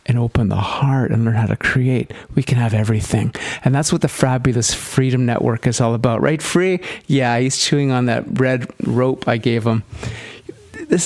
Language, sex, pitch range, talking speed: English, male, 120-140 Hz, 195 wpm